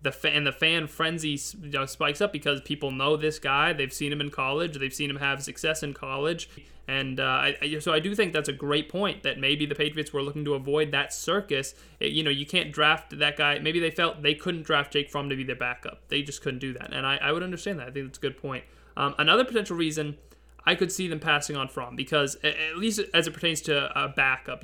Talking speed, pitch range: 250 wpm, 140-160 Hz